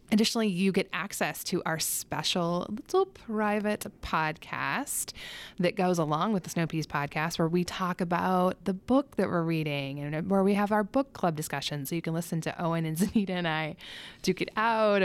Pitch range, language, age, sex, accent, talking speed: 160-215 Hz, English, 20-39, female, American, 185 wpm